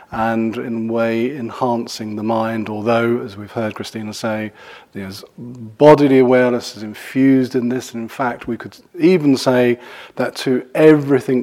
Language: English